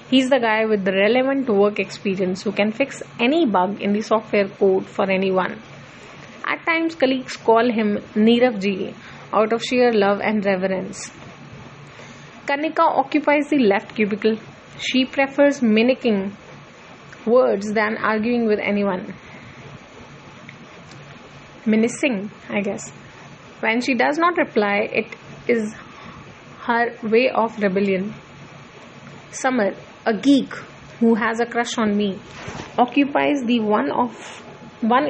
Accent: Indian